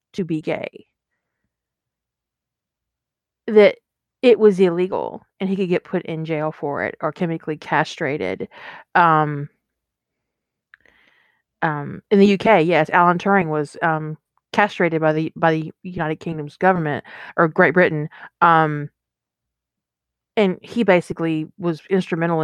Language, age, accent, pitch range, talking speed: English, 30-49, American, 155-200 Hz, 125 wpm